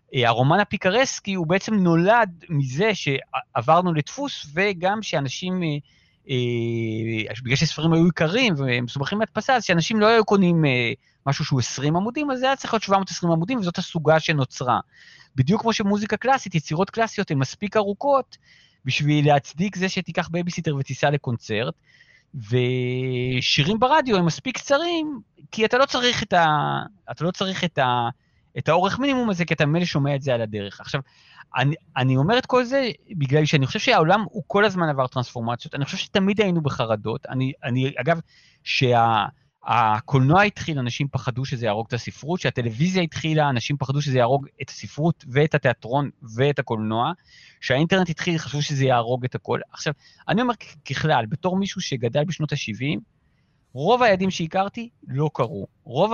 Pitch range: 130-190 Hz